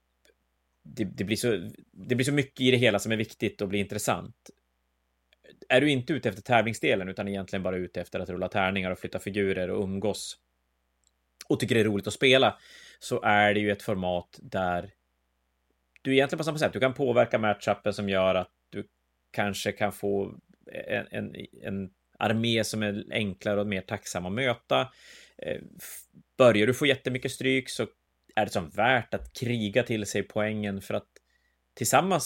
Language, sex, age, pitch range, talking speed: Swedish, male, 30-49, 90-115 Hz, 180 wpm